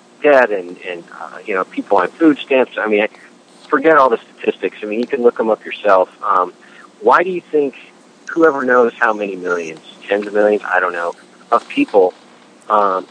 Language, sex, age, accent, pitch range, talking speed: English, male, 40-59, American, 100-165 Hz, 195 wpm